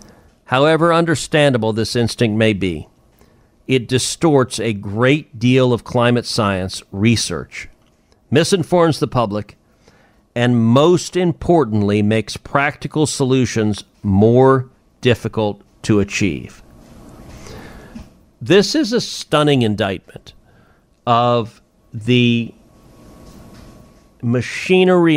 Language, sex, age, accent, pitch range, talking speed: English, male, 50-69, American, 110-150 Hz, 85 wpm